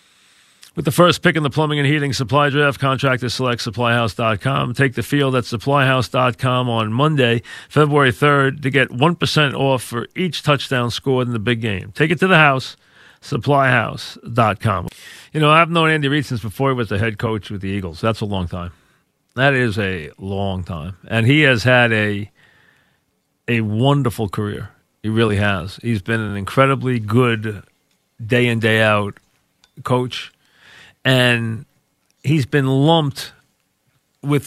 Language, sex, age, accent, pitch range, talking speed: English, male, 40-59, American, 110-135 Hz, 155 wpm